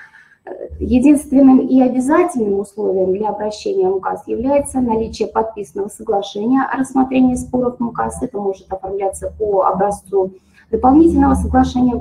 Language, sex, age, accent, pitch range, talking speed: Russian, female, 20-39, native, 205-285 Hz, 120 wpm